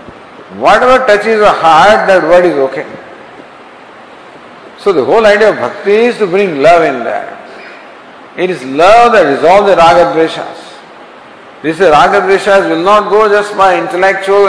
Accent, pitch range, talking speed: Indian, 165-215 Hz, 150 wpm